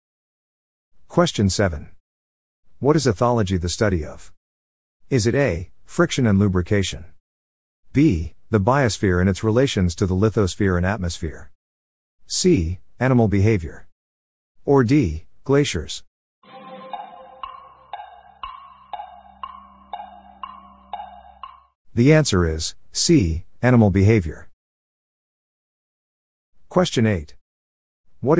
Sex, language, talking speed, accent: male, English, 85 wpm, American